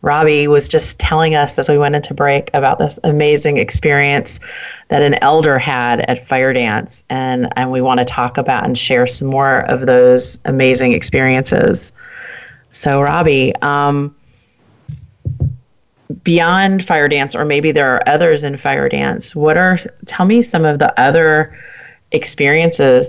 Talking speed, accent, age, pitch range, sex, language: 155 wpm, American, 30-49, 125-155 Hz, female, English